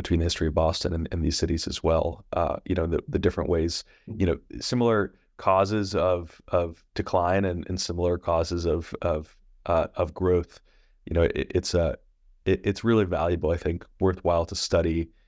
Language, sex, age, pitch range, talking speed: English, male, 30-49, 85-95 Hz, 190 wpm